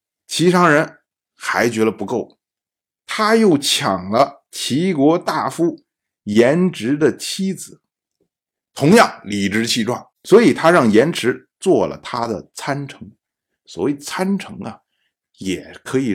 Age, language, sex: 50-69, Chinese, male